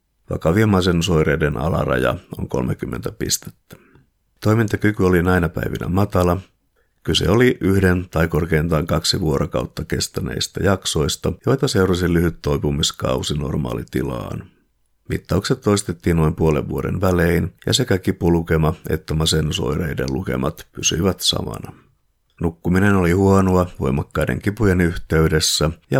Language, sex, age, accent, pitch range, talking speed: Finnish, male, 50-69, native, 80-95 Hz, 105 wpm